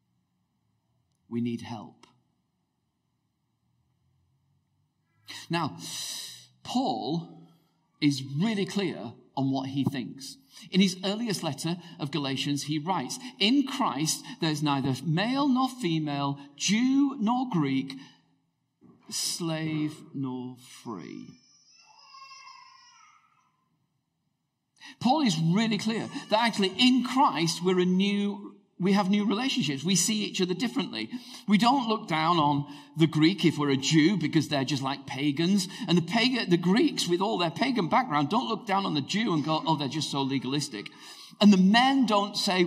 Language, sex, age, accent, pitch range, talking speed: English, male, 50-69, British, 145-220 Hz, 135 wpm